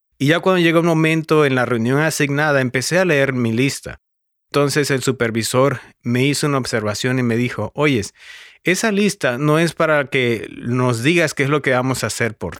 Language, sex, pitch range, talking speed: English, male, 120-160 Hz, 200 wpm